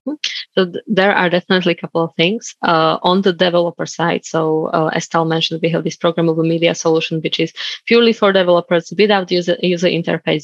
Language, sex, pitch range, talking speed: English, female, 165-185 Hz, 190 wpm